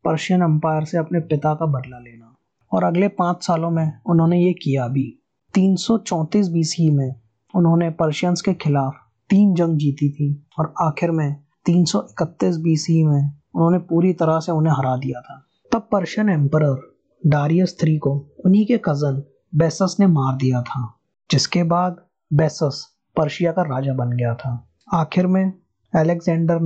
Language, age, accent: Hindi, 20-39, native